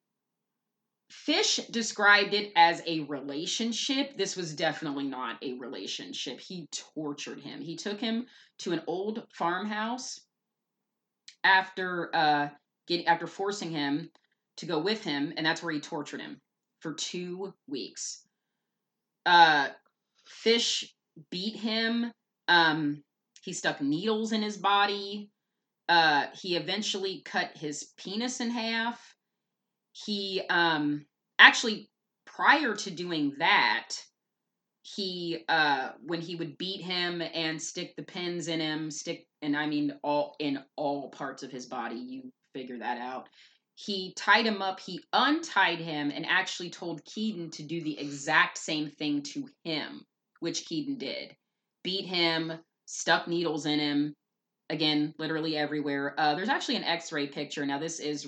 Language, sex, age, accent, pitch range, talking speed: English, female, 30-49, American, 155-215 Hz, 140 wpm